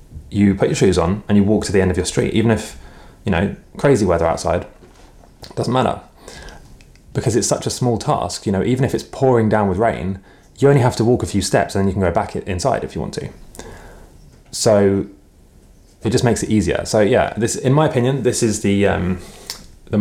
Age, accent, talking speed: 20-39, British, 225 wpm